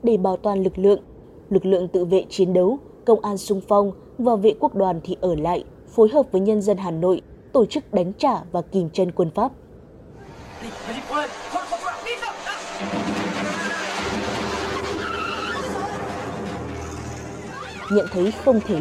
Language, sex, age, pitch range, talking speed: Vietnamese, female, 20-39, 175-225 Hz, 135 wpm